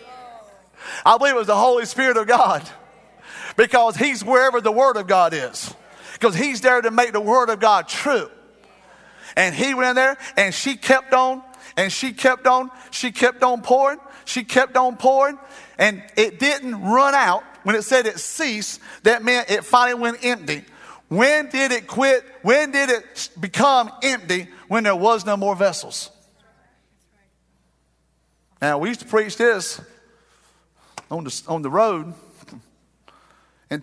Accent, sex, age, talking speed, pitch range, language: American, male, 40-59, 160 wpm, 200-255 Hz, English